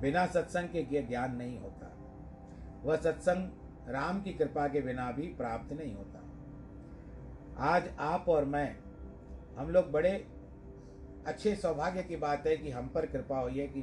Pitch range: 125-175 Hz